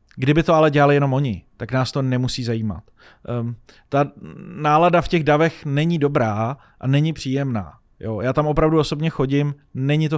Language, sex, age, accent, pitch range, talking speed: Czech, male, 30-49, native, 130-155 Hz, 175 wpm